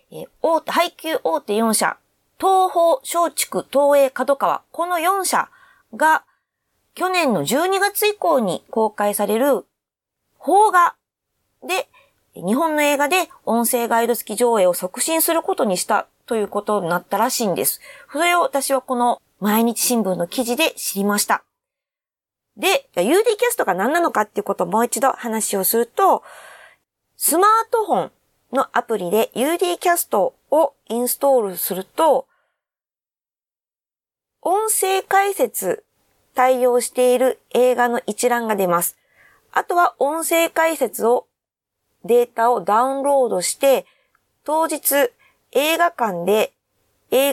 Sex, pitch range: female, 225-335 Hz